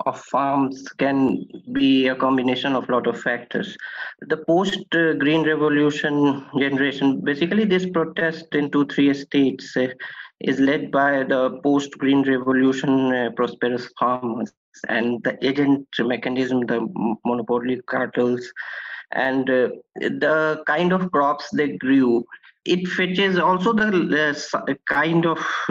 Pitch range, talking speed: 130-160 Hz, 125 wpm